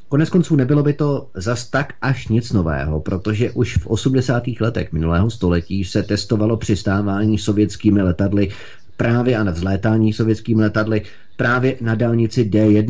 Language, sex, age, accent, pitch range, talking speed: Czech, male, 30-49, native, 90-110 Hz, 150 wpm